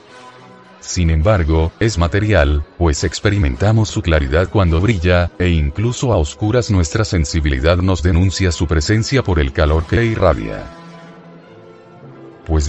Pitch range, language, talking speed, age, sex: 85-110 Hz, Spanish, 125 wpm, 40-59, male